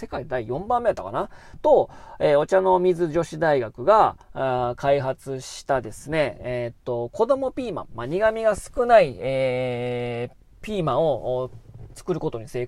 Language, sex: Japanese, male